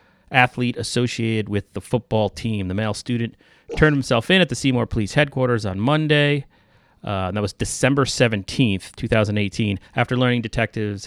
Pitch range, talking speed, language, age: 105-130 Hz, 150 wpm, English, 30-49